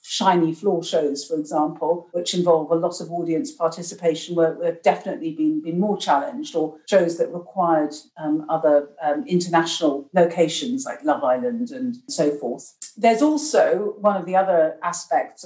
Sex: female